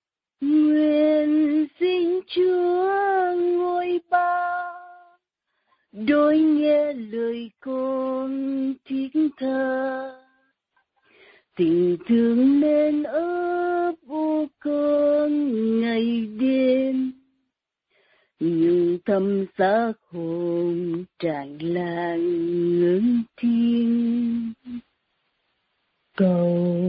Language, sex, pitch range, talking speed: Vietnamese, female, 235-310 Hz, 60 wpm